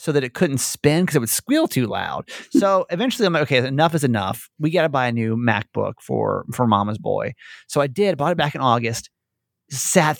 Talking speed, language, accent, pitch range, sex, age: 230 wpm, English, American, 130-180 Hz, male, 30-49